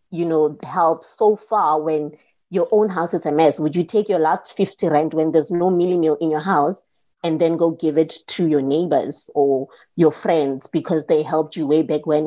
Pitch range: 160-205 Hz